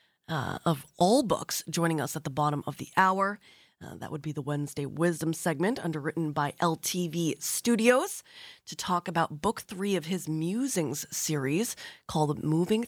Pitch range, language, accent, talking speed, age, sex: 155-205 Hz, English, American, 165 wpm, 30-49, female